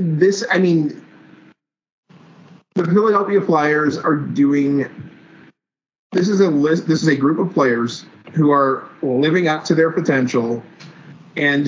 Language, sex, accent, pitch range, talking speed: English, male, American, 135-170 Hz, 135 wpm